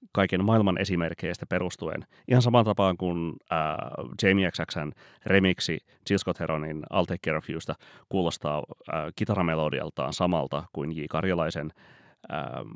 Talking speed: 125 wpm